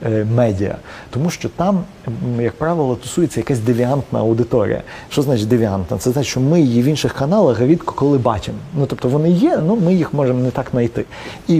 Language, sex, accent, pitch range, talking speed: Ukrainian, male, native, 130-175 Hz, 185 wpm